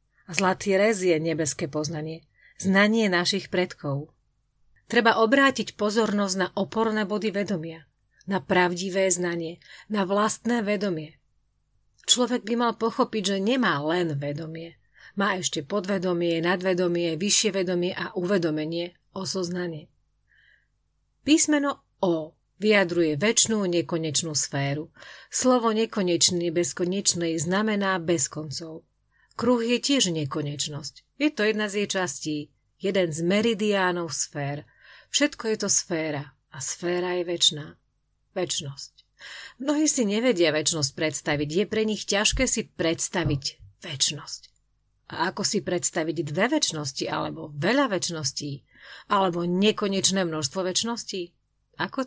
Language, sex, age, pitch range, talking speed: Slovak, female, 40-59, 155-205 Hz, 115 wpm